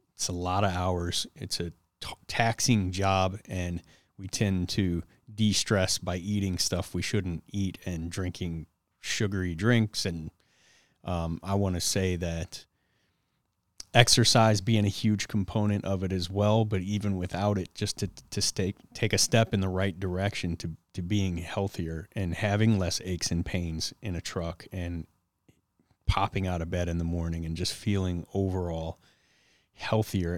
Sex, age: male, 30-49